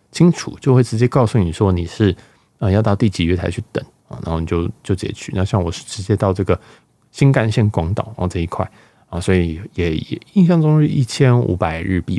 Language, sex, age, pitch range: Chinese, male, 20-39, 95-120 Hz